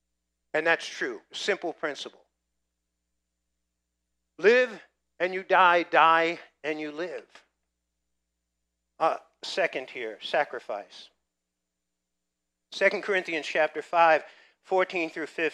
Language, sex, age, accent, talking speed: English, male, 50-69, American, 80 wpm